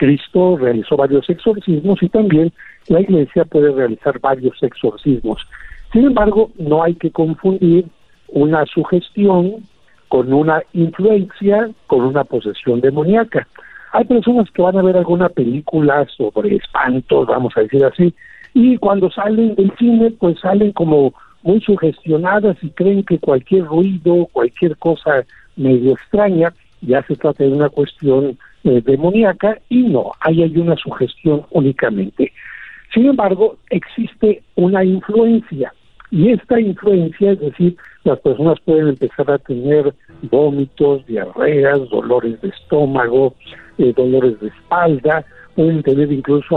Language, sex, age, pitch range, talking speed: Spanish, male, 60-79, 140-195 Hz, 130 wpm